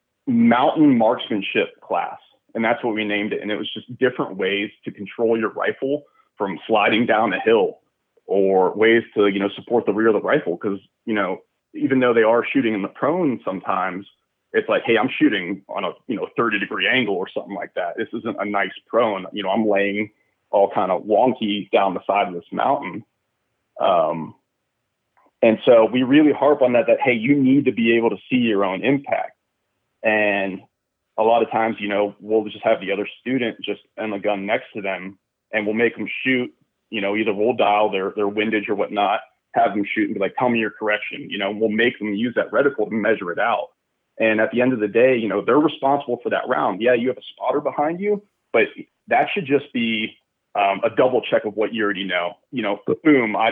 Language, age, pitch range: English, 30-49, 105-130 Hz